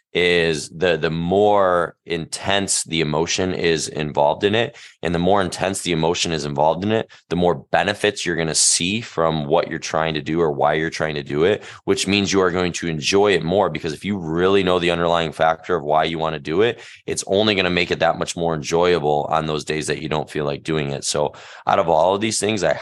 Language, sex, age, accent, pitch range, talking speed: English, male, 20-39, American, 80-90 Hz, 235 wpm